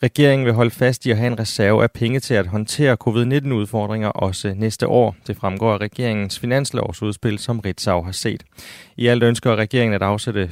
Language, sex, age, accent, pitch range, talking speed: Danish, male, 30-49, native, 100-120 Hz, 190 wpm